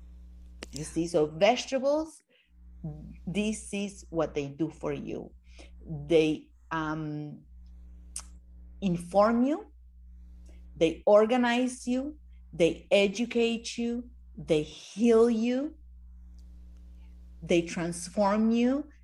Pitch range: 135-205 Hz